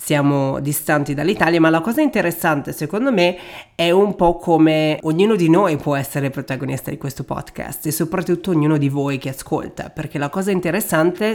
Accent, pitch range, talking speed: native, 145-170 Hz, 175 wpm